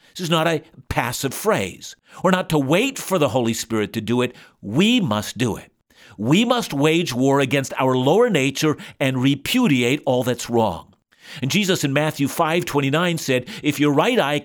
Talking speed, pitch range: 185 wpm, 125-175 Hz